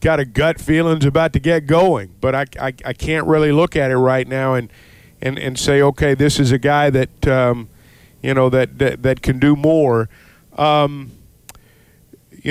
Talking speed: 190 wpm